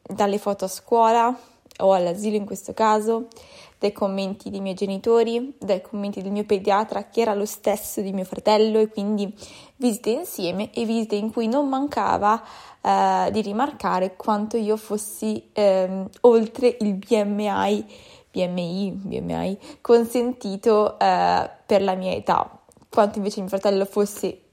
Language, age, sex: Italian, 20-39, female